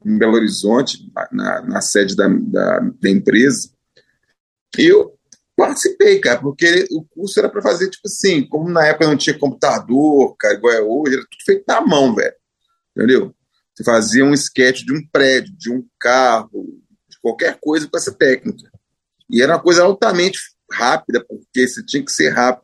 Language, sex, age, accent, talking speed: Portuguese, male, 30-49, Brazilian, 180 wpm